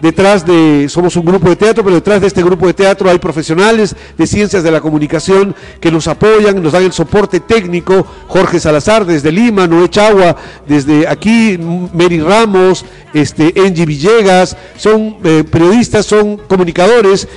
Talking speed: 160 wpm